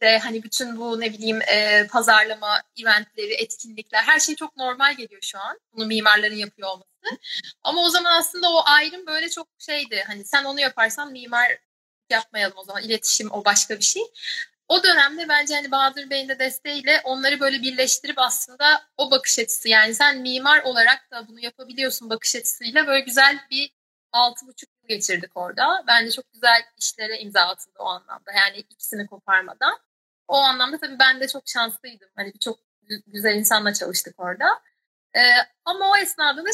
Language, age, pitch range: Turkish, 30-49, 220-285 Hz